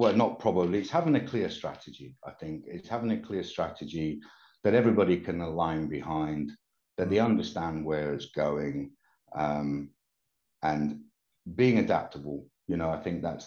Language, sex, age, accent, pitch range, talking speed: English, male, 50-69, British, 80-100 Hz, 155 wpm